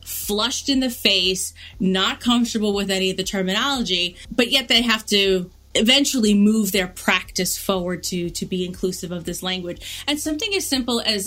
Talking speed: 175 wpm